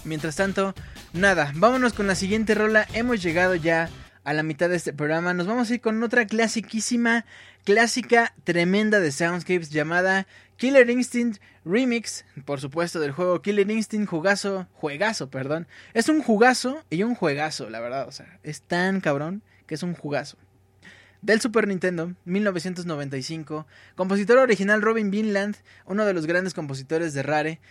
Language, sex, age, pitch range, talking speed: Spanish, male, 20-39, 145-200 Hz, 160 wpm